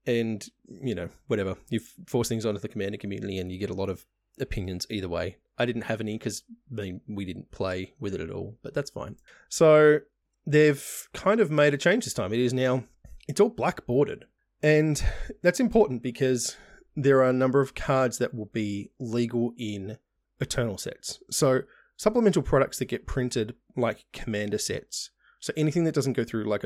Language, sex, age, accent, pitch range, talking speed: English, male, 20-39, Australian, 100-135 Hz, 185 wpm